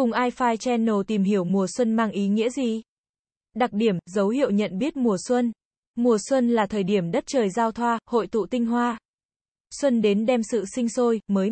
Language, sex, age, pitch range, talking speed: Vietnamese, female, 20-39, 200-245 Hz, 205 wpm